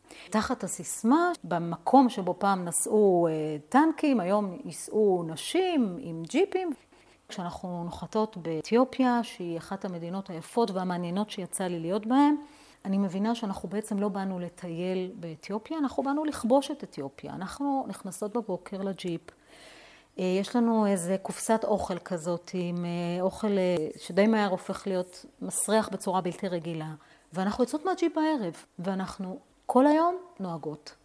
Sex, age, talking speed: female, 40-59, 125 wpm